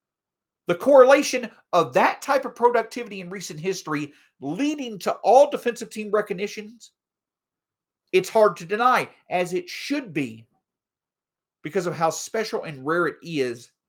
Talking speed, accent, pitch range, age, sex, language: 140 wpm, American, 155-240 Hz, 50-69, male, English